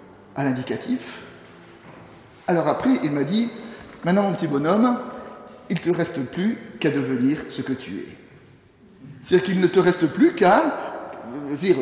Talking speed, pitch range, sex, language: 175 wpm, 145-225 Hz, male, French